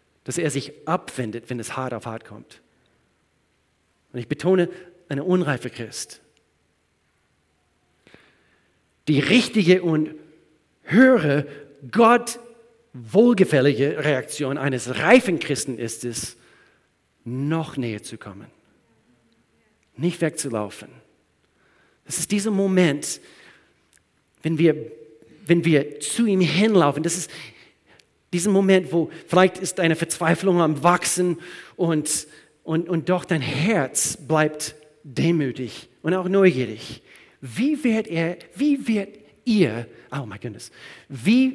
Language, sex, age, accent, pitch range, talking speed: German, male, 40-59, German, 135-185 Hz, 110 wpm